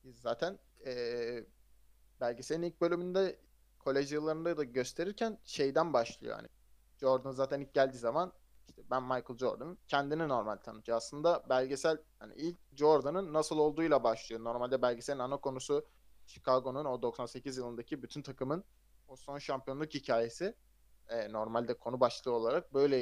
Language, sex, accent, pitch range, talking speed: Turkish, male, native, 120-160 Hz, 135 wpm